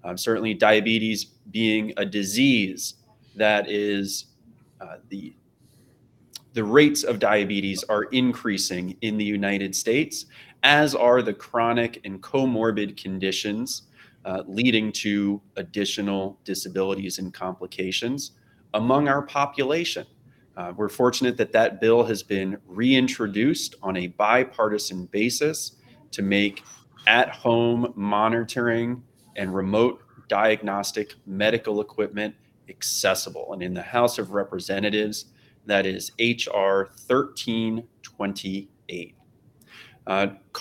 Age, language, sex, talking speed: 30-49, English, male, 105 wpm